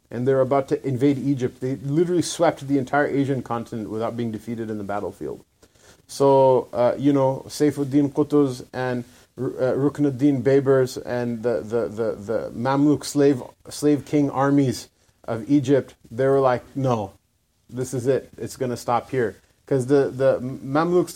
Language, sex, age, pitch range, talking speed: English, male, 30-49, 125-145 Hz, 155 wpm